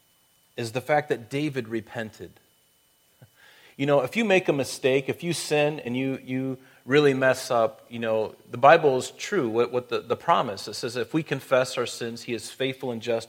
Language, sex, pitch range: English, male, 115-140 Hz